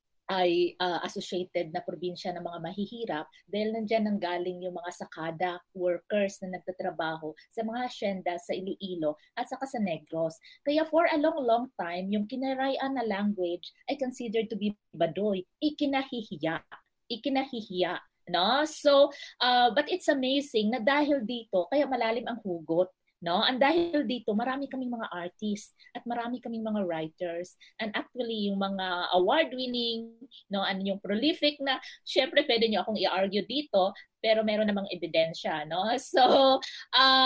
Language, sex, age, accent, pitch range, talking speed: Filipino, female, 20-39, native, 180-265 Hz, 155 wpm